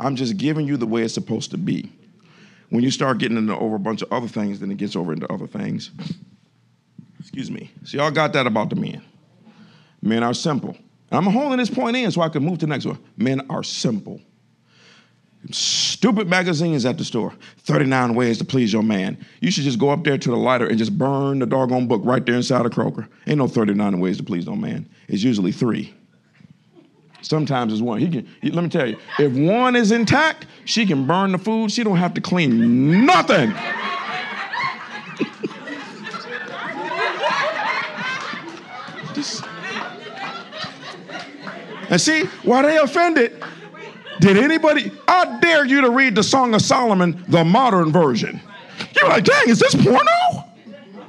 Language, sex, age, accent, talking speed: English, male, 50-69, American, 175 wpm